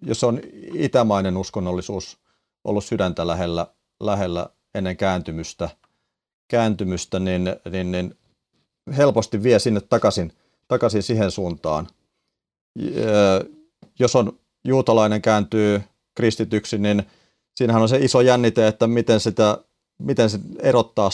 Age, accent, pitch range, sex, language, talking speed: 30-49, native, 95-115 Hz, male, Finnish, 100 wpm